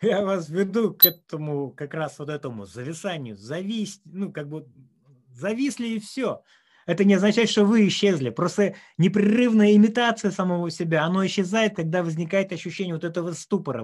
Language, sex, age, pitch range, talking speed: Russian, male, 30-49, 160-205 Hz, 155 wpm